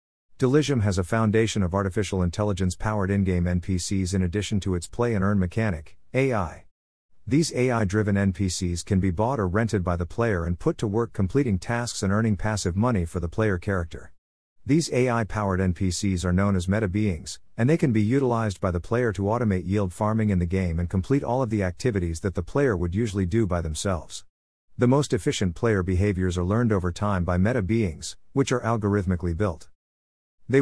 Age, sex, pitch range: 50-69, male, 90-115 Hz